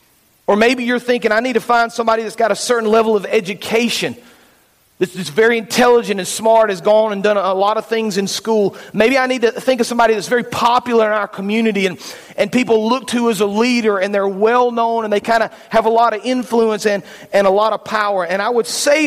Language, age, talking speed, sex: English, 40-59, 235 wpm, male